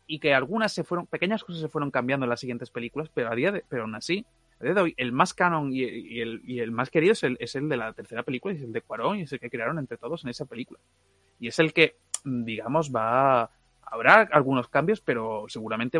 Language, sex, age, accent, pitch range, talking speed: Spanish, male, 30-49, Spanish, 120-160 Hz, 260 wpm